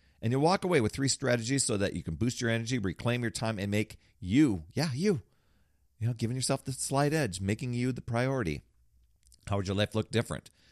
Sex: male